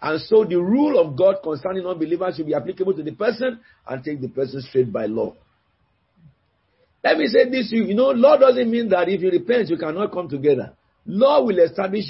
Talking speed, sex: 215 wpm, male